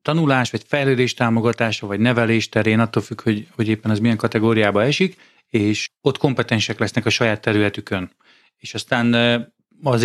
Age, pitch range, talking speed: 30-49, 110-130 Hz, 155 wpm